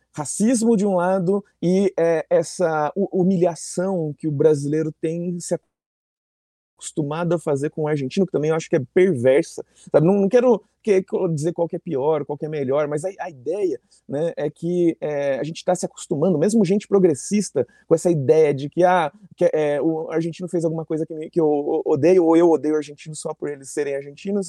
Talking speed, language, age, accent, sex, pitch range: 205 wpm, Portuguese, 30-49, Brazilian, male, 165-200 Hz